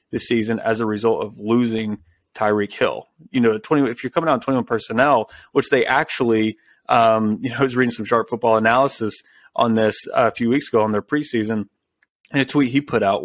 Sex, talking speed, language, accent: male, 220 wpm, English, American